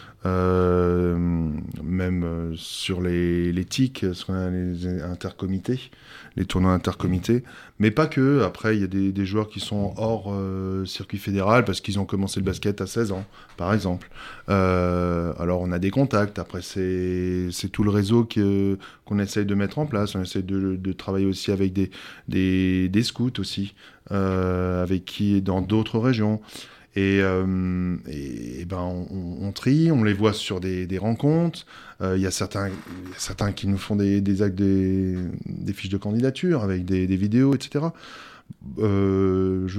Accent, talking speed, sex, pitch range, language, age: French, 180 wpm, male, 95-115 Hz, French, 20-39